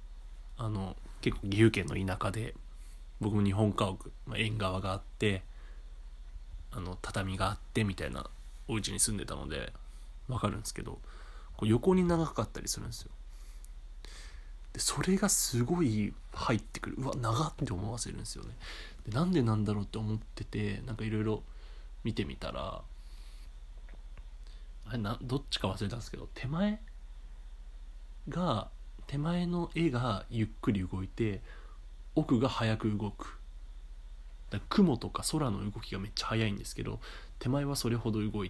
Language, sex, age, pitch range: Japanese, male, 20-39, 95-125 Hz